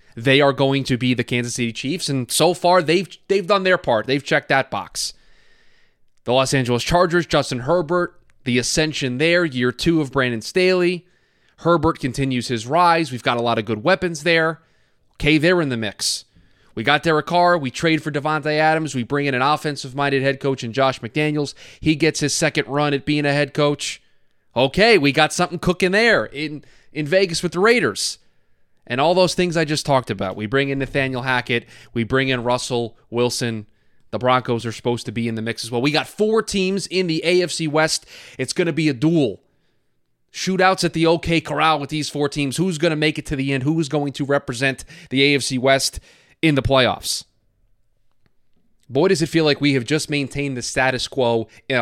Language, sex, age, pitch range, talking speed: English, male, 20-39, 125-165 Hz, 205 wpm